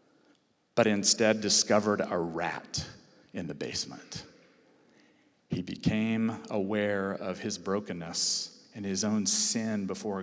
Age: 40-59